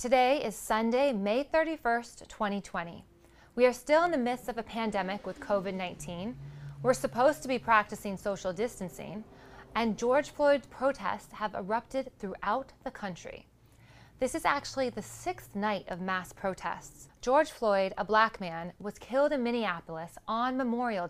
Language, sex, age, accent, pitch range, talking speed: English, female, 20-39, American, 185-240 Hz, 150 wpm